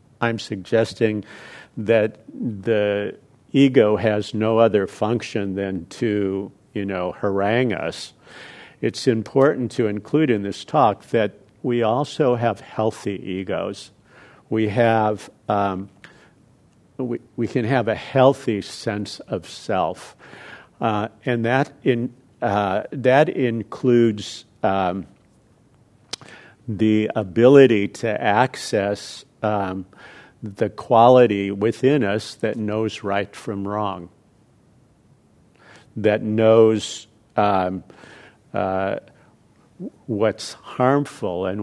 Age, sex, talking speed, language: 50-69, male, 105 wpm, English